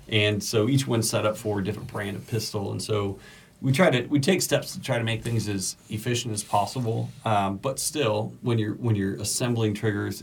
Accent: American